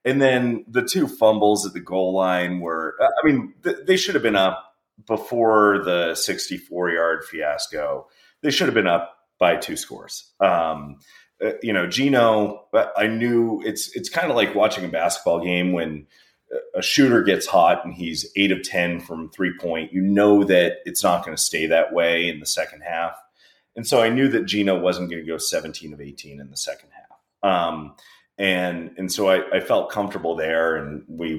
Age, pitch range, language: 30-49, 80-100 Hz, English